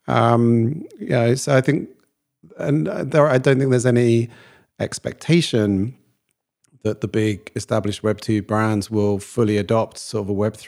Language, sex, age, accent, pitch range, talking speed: English, male, 40-59, British, 105-125 Hz, 155 wpm